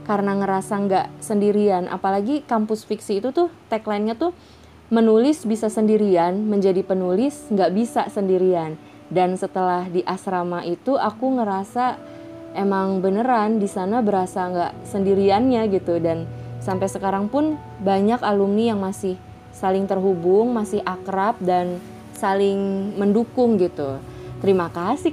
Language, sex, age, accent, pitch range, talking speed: Indonesian, female, 20-39, native, 190-235 Hz, 125 wpm